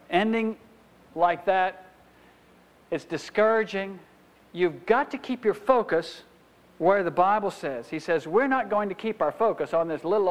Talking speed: 155 wpm